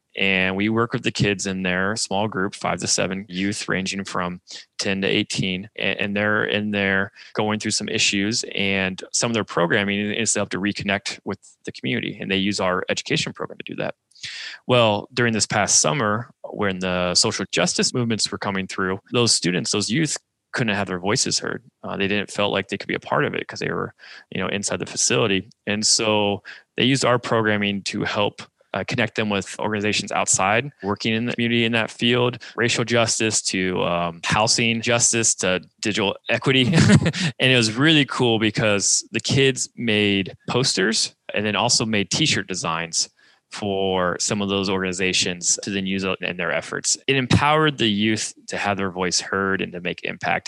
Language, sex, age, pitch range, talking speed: English, male, 20-39, 95-115 Hz, 190 wpm